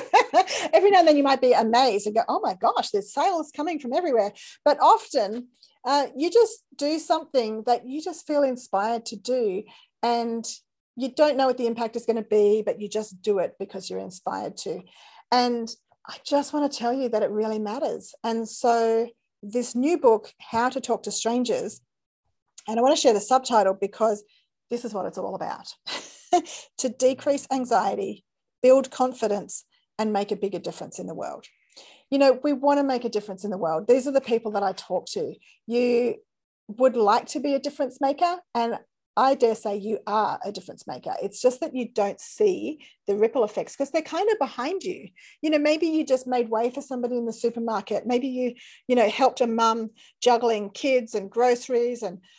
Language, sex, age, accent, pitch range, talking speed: English, female, 40-59, Australian, 220-285 Hz, 200 wpm